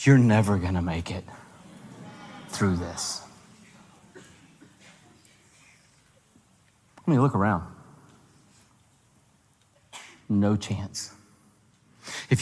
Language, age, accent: English, 40-59, American